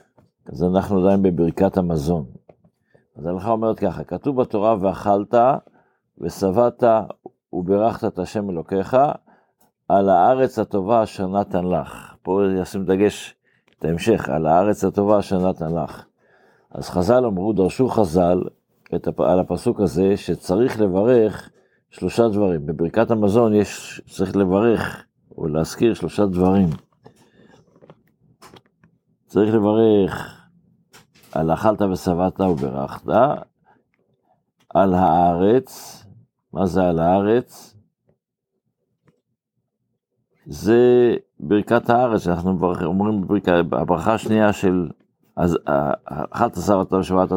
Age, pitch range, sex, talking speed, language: 60-79, 90-110 Hz, male, 95 wpm, Hebrew